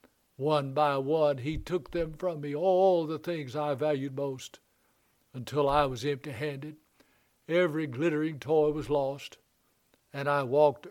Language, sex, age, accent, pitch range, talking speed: English, male, 60-79, American, 140-160 Hz, 145 wpm